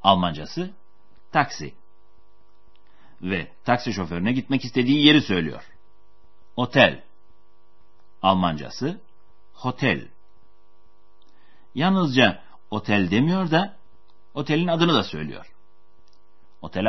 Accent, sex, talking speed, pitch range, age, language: native, male, 75 wpm, 90-125 Hz, 60-79, Turkish